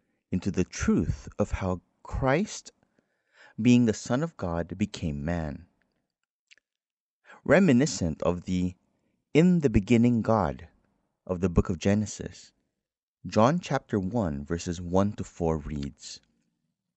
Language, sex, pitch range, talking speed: English, male, 85-115 Hz, 115 wpm